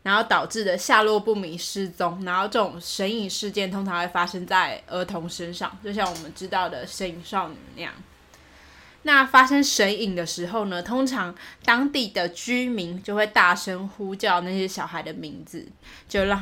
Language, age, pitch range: Chinese, 20-39, 180-225 Hz